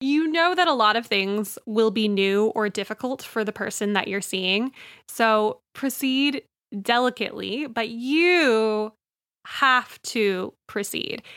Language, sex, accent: English, female, American